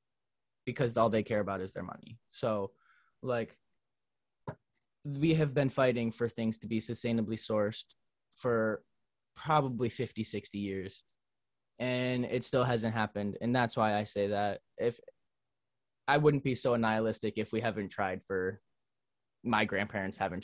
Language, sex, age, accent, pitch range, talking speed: English, male, 20-39, American, 105-125 Hz, 145 wpm